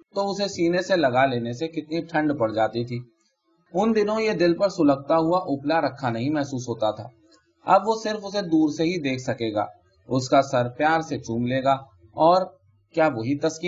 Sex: male